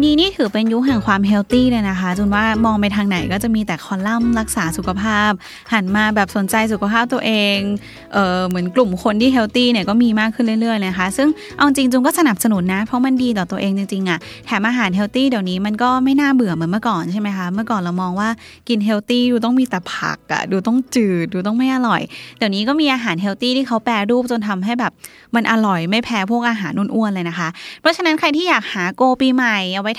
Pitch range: 195-250 Hz